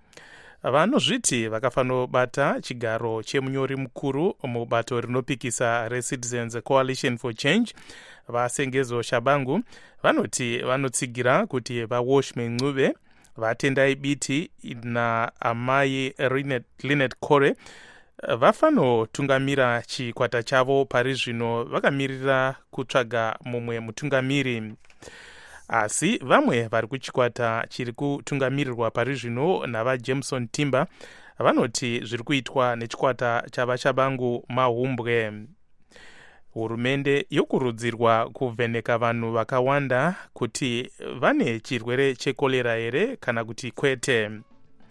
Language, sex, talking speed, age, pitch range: English, male, 95 wpm, 30-49, 120-135 Hz